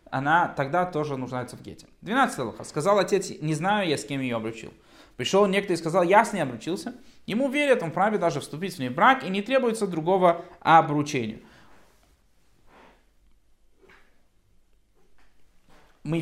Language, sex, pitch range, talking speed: Russian, male, 140-200 Hz, 150 wpm